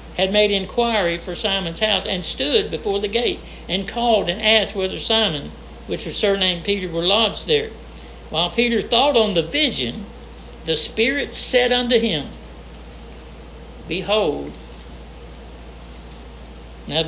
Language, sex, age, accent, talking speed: English, male, 60-79, American, 130 wpm